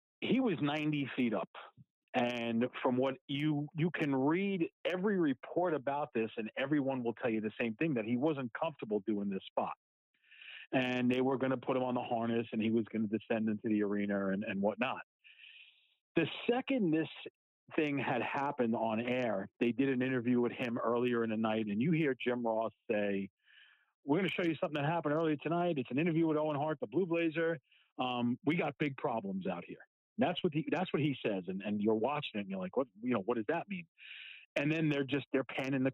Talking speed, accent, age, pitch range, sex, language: 220 wpm, American, 40-59, 110-150 Hz, male, English